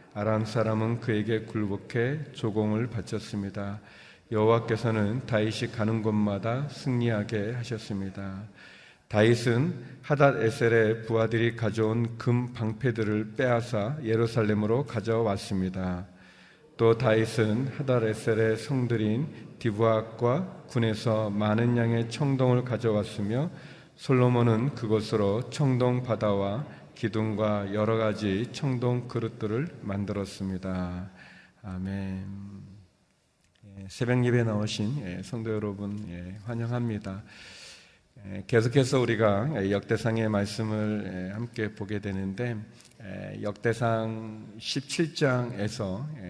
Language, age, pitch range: Korean, 40-59, 100-120 Hz